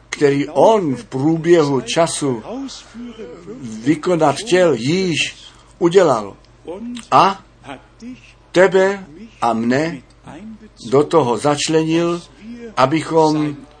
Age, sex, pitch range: 60-79, male, 125-175 Hz